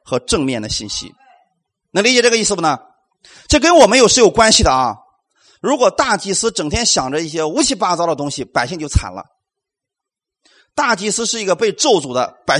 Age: 30-49